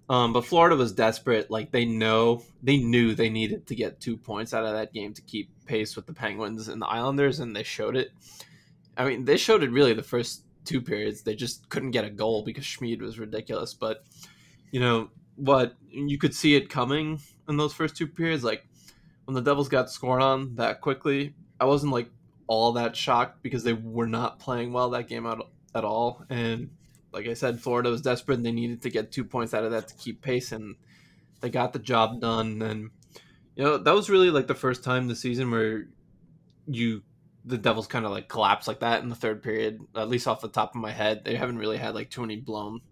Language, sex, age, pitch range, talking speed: English, male, 20-39, 115-135 Hz, 225 wpm